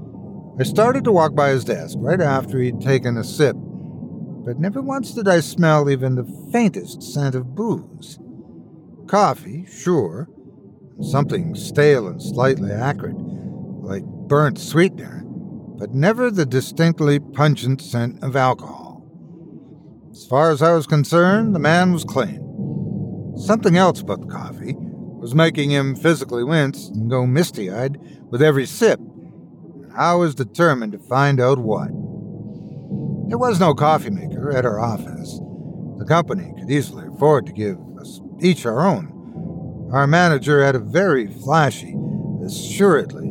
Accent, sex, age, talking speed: American, male, 60-79, 140 wpm